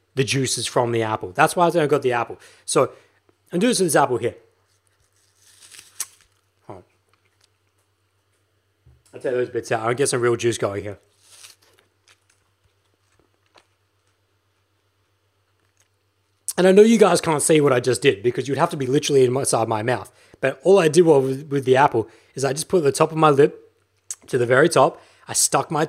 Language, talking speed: English, 185 wpm